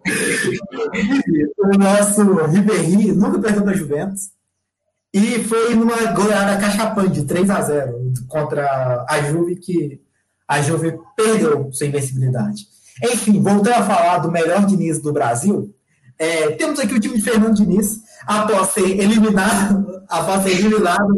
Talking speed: 130 wpm